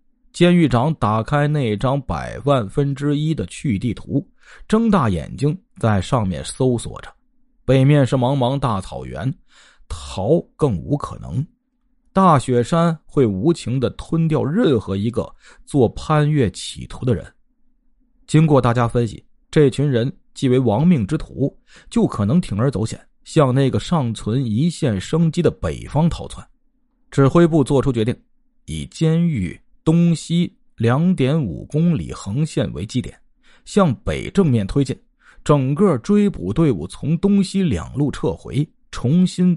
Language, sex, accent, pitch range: Chinese, male, native, 125-175 Hz